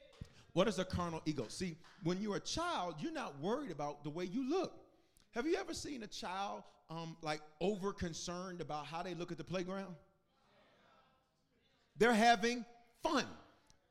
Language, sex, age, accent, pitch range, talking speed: English, male, 40-59, American, 175-240 Hz, 160 wpm